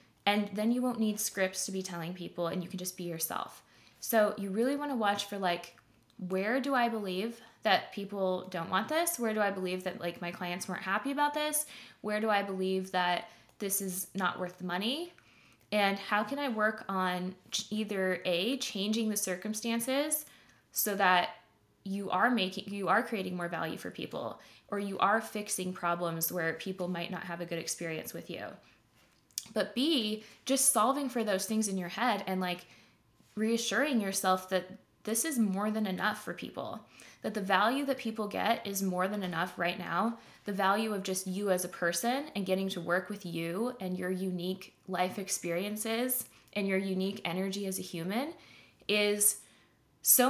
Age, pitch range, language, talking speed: 20-39, 185-220 Hz, English, 185 wpm